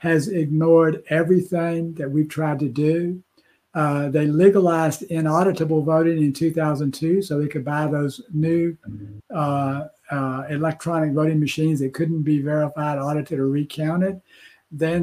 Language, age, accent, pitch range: English, 60-79, American, 150-180 Hz